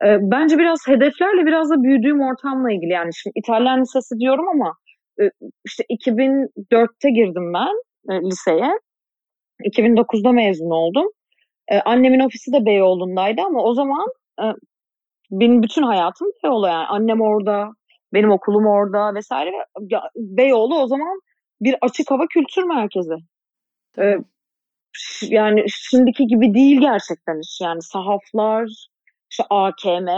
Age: 30-49